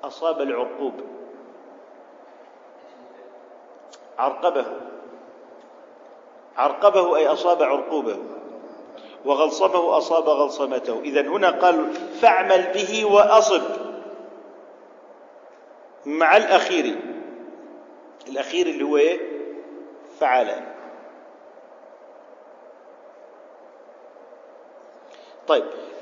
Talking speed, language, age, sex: 55 wpm, Arabic, 50-69, male